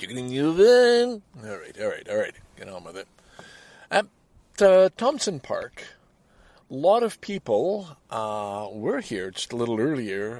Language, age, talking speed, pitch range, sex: English, 50-69, 145 wpm, 110-160 Hz, male